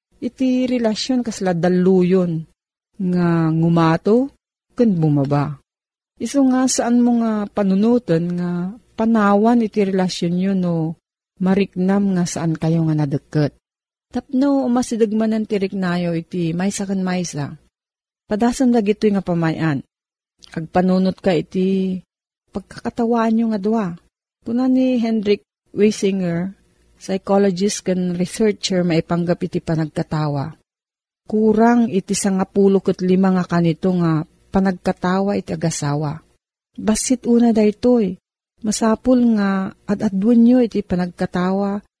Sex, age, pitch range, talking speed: female, 40-59, 175-220 Hz, 110 wpm